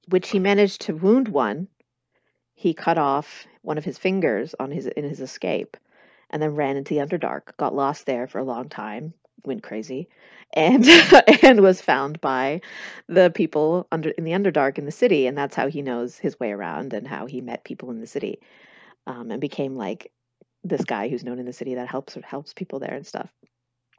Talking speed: 205 wpm